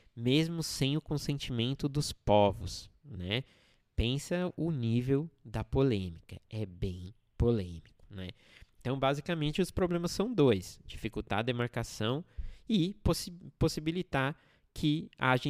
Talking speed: 115 wpm